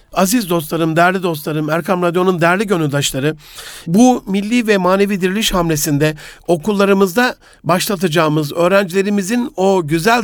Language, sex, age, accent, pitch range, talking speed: Turkish, male, 60-79, native, 160-200 Hz, 110 wpm